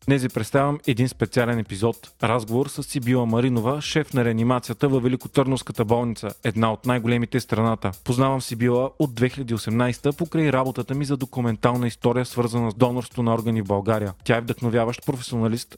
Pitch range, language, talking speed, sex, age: 120-140 Hz, Bulgarian, 155 wpm, male, 30-49